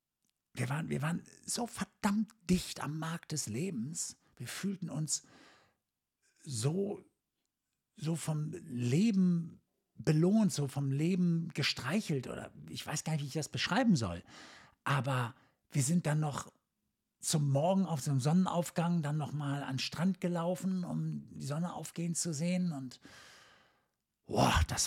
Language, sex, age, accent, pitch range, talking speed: German, male, 60-79, German, 130-175 Hz, 140 wpm